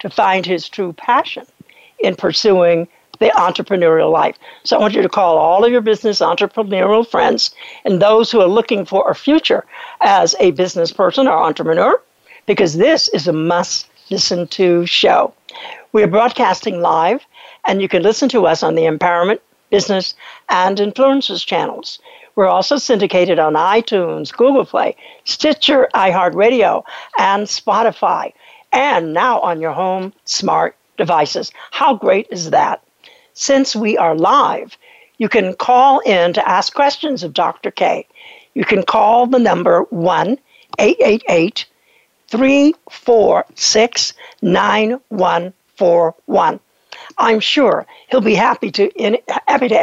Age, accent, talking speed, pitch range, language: 60-79, American, 130 wpm, 185-280 Hz, English